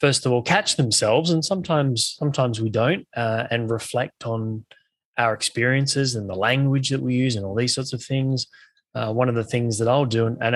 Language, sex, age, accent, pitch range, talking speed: English, male, 20-39, Australian, 110-130 Hz, 210 wpm